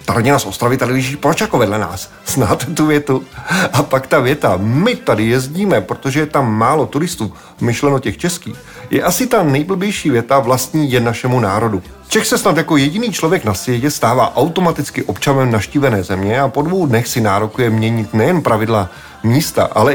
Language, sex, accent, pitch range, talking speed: Czech, male, native, 115-160 Hz, 170 wpm